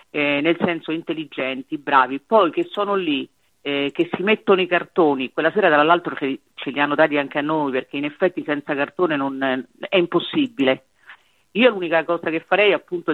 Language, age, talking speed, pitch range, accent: Italian, 40-59, 185 wpm, 140-180 Hz, native